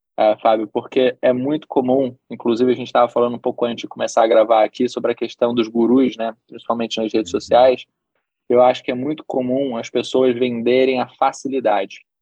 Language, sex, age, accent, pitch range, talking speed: Portuguese, male, 20-39, Brazilian, 115-130 Hz, 195 wpm